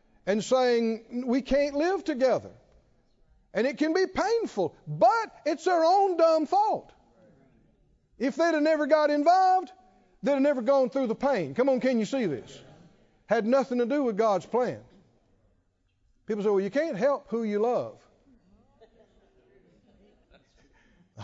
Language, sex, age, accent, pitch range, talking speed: English, male, 60-79, American, 235-310 Hz, 150 wpm